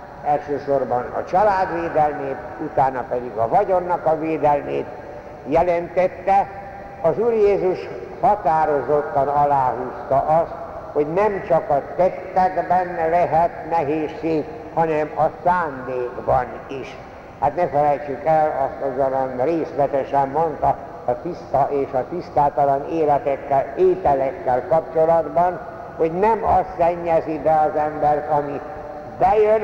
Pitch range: 140-175 Hz